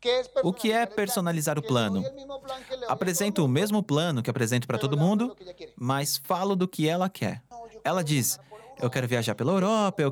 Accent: Brazilian